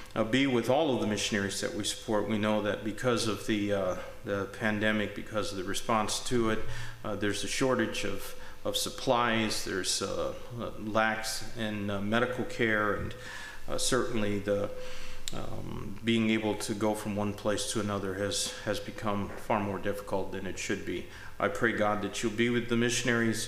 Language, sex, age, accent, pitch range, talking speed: English, male, 40-59, American, 100-115 Hz, 185 wpm